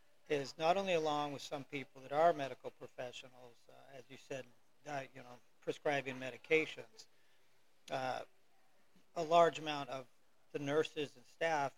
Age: 50-69